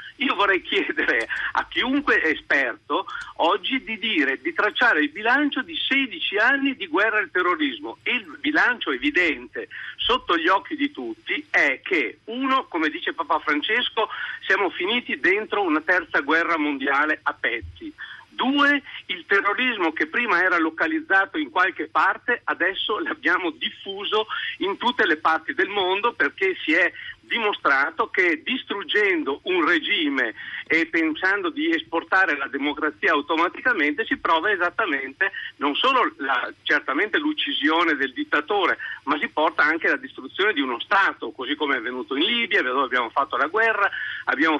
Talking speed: 150 wpm